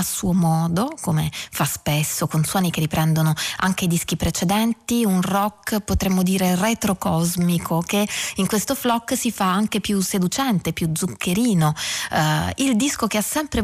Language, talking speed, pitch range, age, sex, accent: Italian, 150 wpm, 170-220 Hz, 20-39, female, native